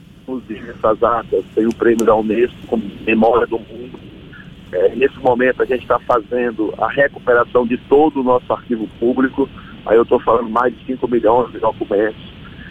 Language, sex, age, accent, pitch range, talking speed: Portuguese, male, 50-69, Brazilian, 120-155 Hz, 170 wpm